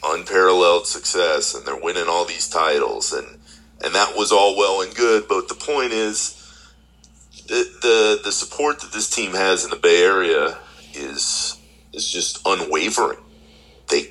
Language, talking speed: English, 155 wpm